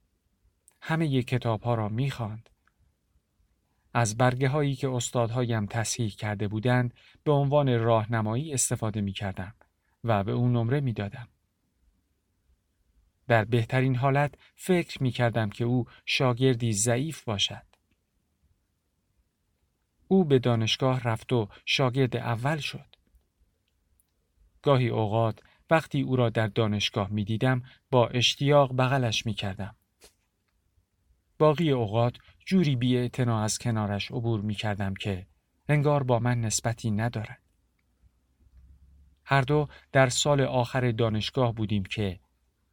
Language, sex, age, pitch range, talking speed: Persian, male, 50-69, 95-125 Hz, 105 wpm